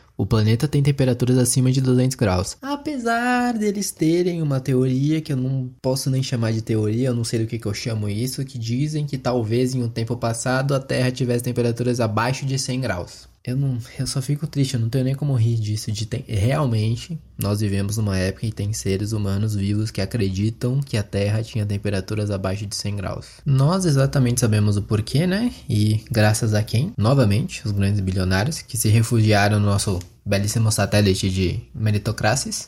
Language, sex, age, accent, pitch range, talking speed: Portuguese, male, 20-39, Brazilian, 110-145 Hz, 195 wpm